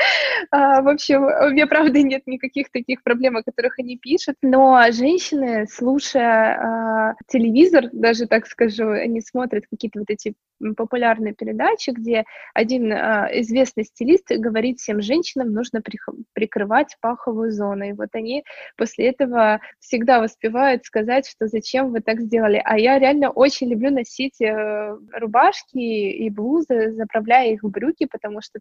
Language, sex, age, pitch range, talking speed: Russian, female, 20-39, 220-260 Hz, 140 wpm